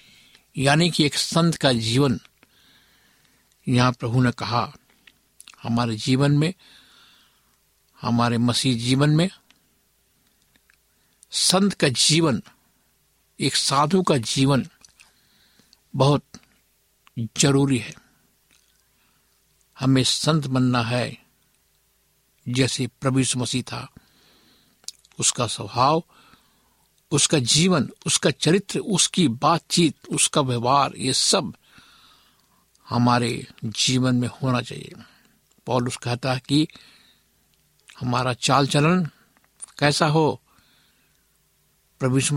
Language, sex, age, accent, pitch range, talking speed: Hindi, male, 60-79, native, 120-150 Hz, 90 wpm